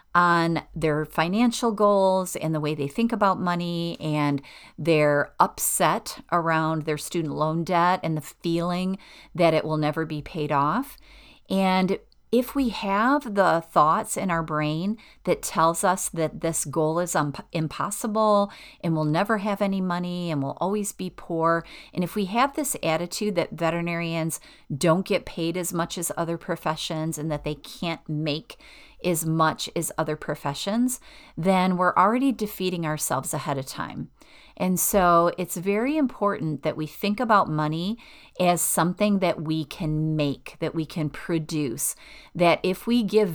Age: 40-59